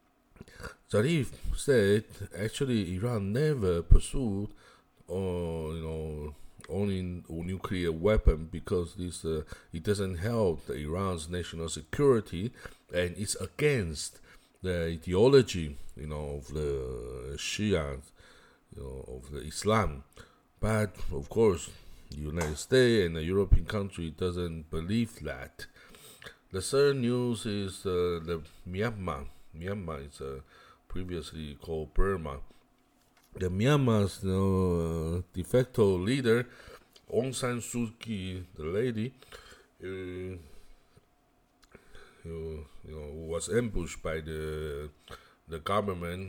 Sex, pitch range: male, 80-105 Hz